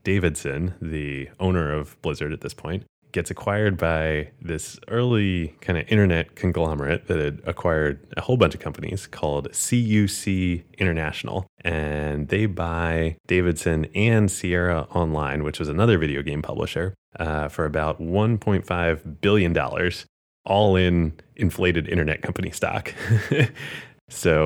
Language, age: English, 20-39